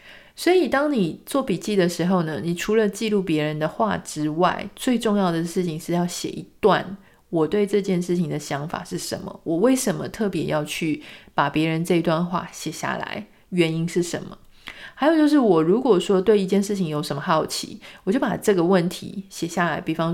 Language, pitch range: Chinese, 170-210 Hz